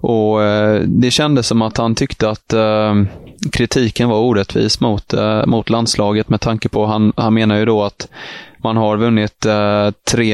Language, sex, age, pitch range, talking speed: Swedish, male, 20-39, 105-120 Hz, 165 wpm